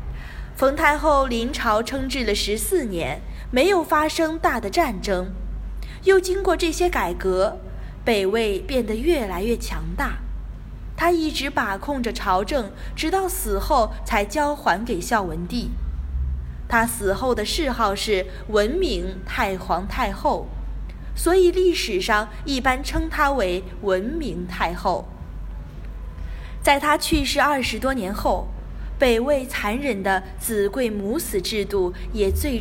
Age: 20-39